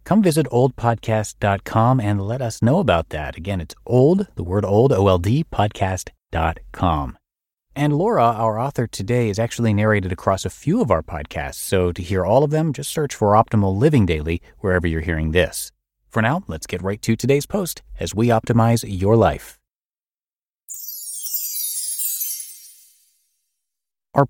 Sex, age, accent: male, 30-49, American